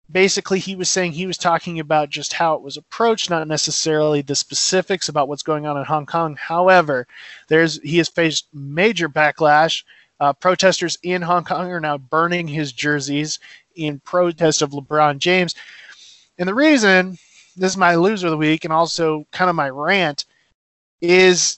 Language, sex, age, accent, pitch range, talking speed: English, male, 20-39, American, 150-180 Hz, 175 wpm